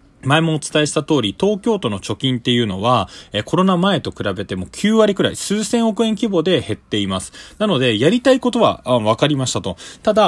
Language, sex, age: Japanese, male, 20-39